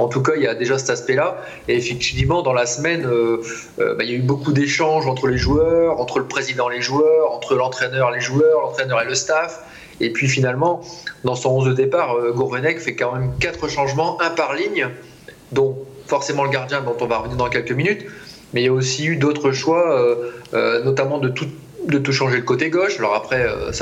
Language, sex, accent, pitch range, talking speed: French, male, French, 125-150 Hz, 230 wpm